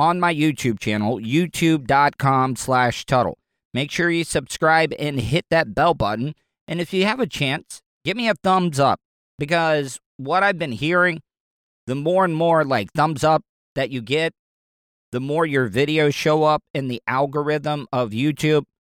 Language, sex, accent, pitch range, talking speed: English, male, American, 125-160 Hz, 165 wpm